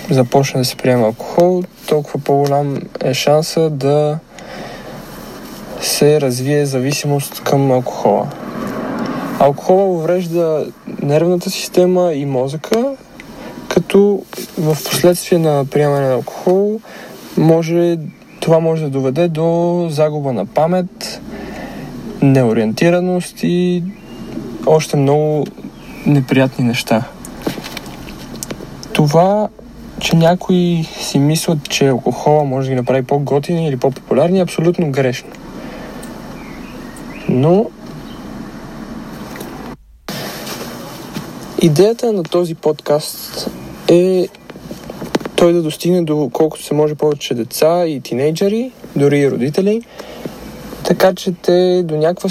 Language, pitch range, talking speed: Bulgarian, 140-180 Hz, 100 wpm